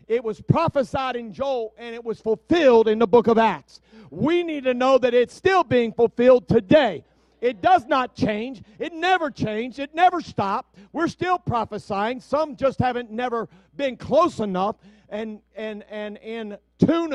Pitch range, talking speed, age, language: 180-235 Hz, 175 wpm, 50-69, English